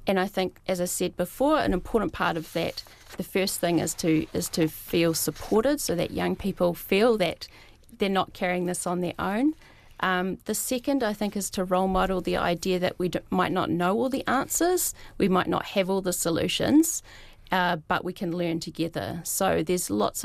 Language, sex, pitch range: English, female, 170-205 Hz